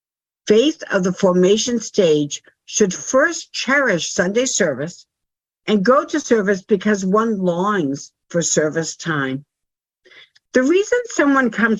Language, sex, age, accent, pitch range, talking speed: English, female, 60-79, American, 175-240 Hz, 120 wpm